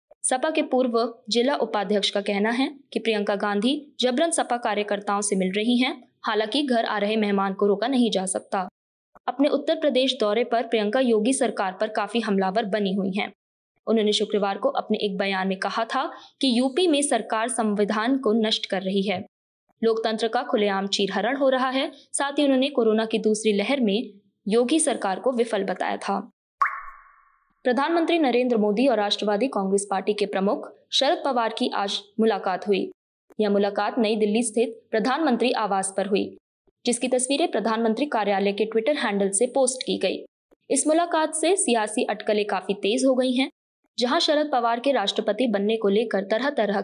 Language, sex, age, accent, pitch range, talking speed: Hindi, female, 20-39, native, 205-255 Hz, 175 wpm